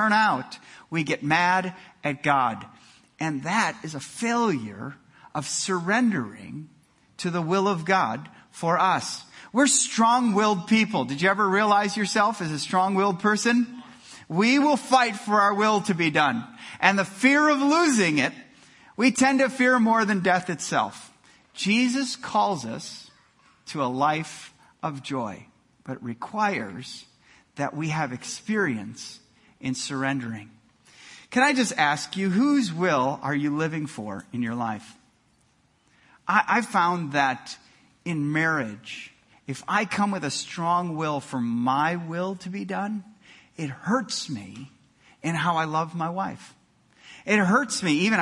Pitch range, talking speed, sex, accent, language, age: 145-210 Hz, 145 wpm, male, American, English, 50-69